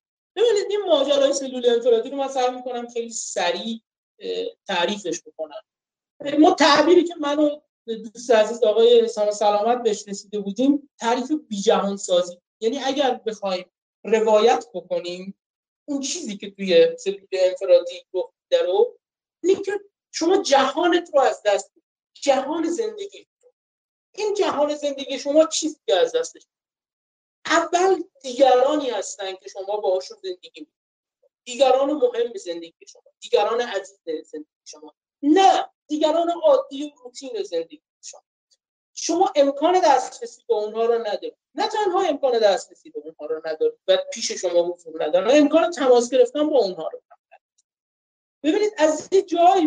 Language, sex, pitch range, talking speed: English, male, 220-335 Hz, 135 wpm